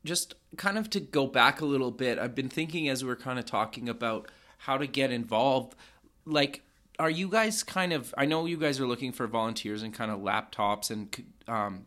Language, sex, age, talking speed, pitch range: English, male, 30-49, 210 wpm, 115-140 Hz